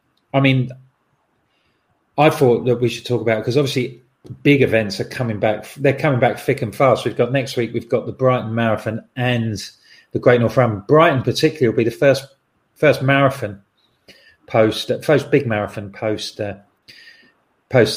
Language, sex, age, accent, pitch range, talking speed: English, male, 40-59, British, 110-130 Hz, 170 wpm